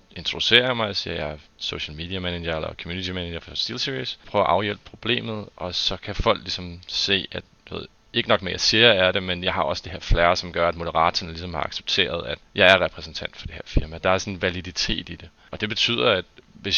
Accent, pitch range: native, 85-100 Hz